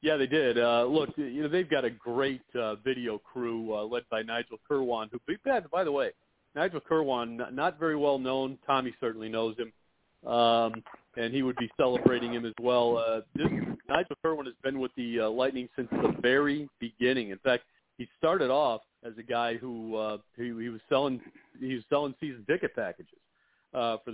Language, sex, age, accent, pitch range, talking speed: English, male, 40-59, American, 115-140 Hz, 195 wpm